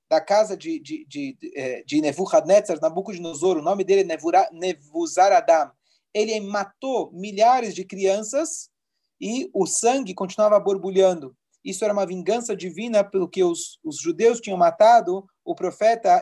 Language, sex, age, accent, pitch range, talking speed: Portuguese, male, 40-59, Brazilian, 180-265 Hz, 140 wpm